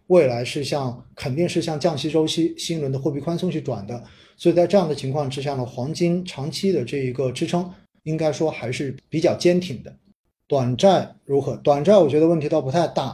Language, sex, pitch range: Chinese, male, 125-160 Hz